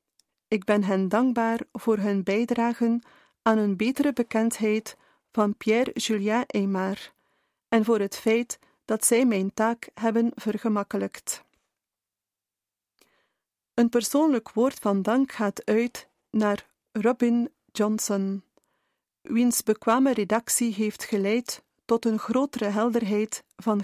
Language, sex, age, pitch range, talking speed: Dutch, female, 40-59, 210-240 Hz, 110 wpm